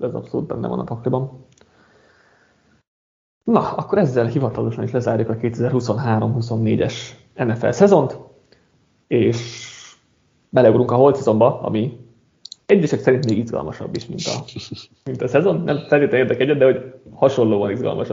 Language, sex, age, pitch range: Hungarian, male, 30-49, 115-135 Hz